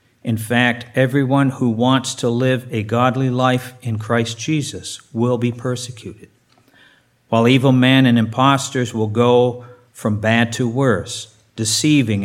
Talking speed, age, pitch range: 135 wpm, 50-69, 110-130 Hz